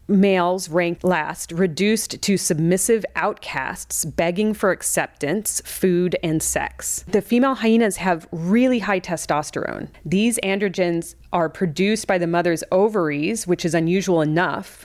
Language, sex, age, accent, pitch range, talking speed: English, female, 30-49, American, 165-195 Hz, 130 wpm